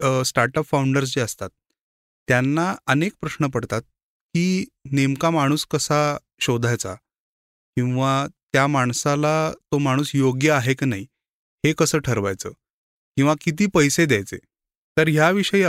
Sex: male